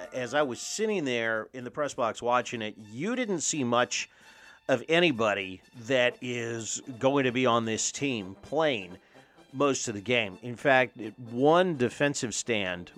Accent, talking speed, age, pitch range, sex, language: American, 160 wpm, 40-59, 110-130 Hz, male, English